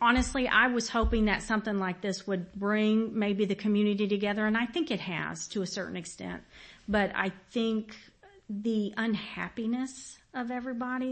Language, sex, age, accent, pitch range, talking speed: English, female, 40-59, American, 180-215 Hz, 160 wpm